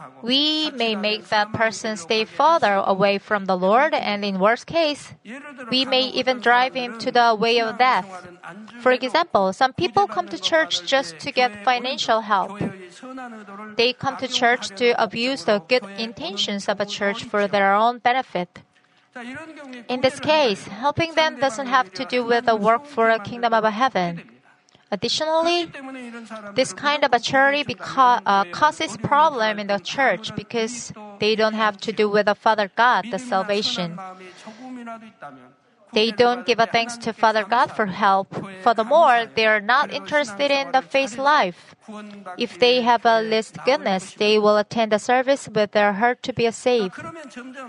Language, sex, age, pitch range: Korean, female, 30-49, 210-260 Hz